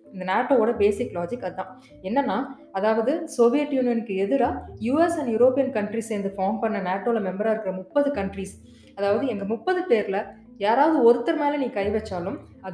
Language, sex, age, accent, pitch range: Tamil, female, 20-39, native, 190-265 Hz